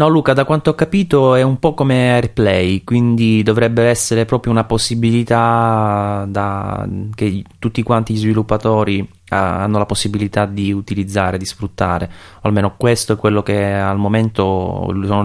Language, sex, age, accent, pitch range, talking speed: Italian, male, 20-39, native, 95-110 Hz, 145 wpm